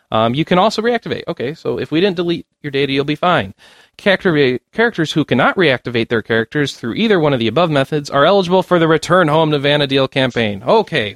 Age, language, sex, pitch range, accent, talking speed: 30-49, English, male, 125-165 Hz, American, 215 wpm